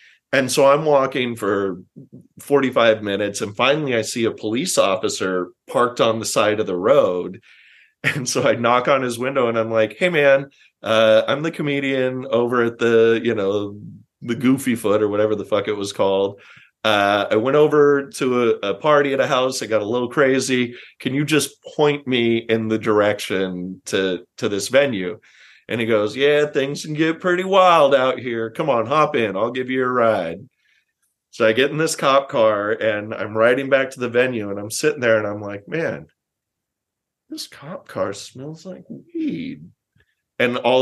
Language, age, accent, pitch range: English, 30-49, American, 110-150 Hz